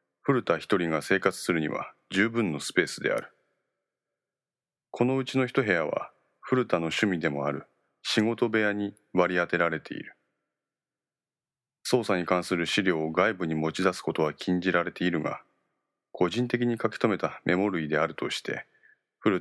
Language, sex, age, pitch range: Japanese, male, 40-59, 85-105 Hz